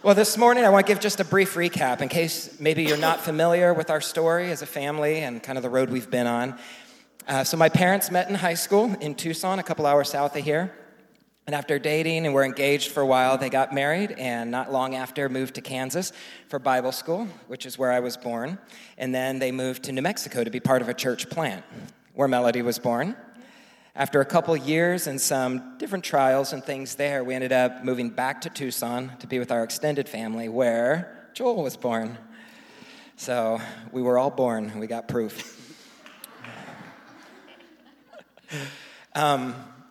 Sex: male